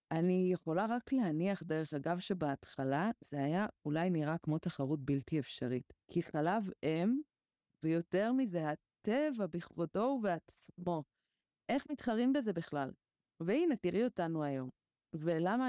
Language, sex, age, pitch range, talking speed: Hebrew, female, 20-39, 150-195 Hz, 120 wpm